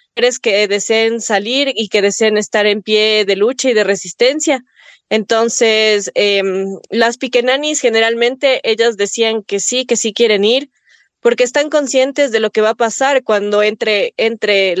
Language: Spanish